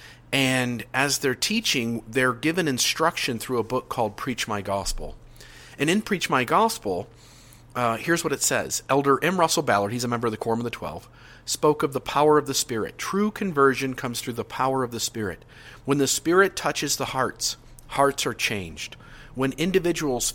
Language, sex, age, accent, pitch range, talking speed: English, male, 40-59, American, 110-140 Hz, 190 wpm